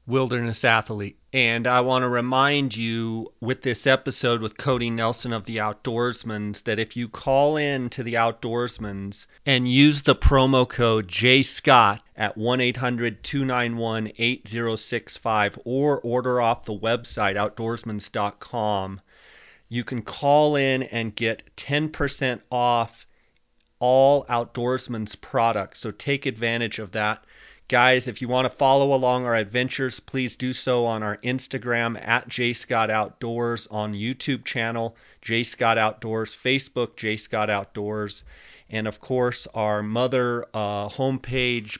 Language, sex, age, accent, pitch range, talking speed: English, male, 30-49, American, 110-130 Hz, 120 wpm